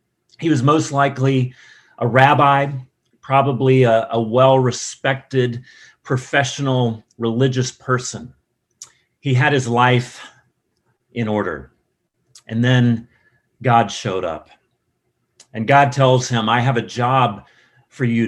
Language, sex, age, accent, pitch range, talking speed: English, male, 40-59, American, 120-145 Hz, 110 wpm